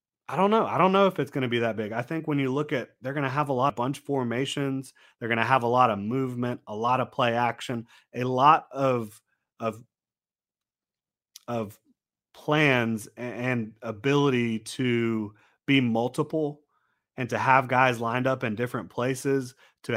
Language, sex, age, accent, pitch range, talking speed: English, male, 30-49, American, 110-135 Hz, 185 wpm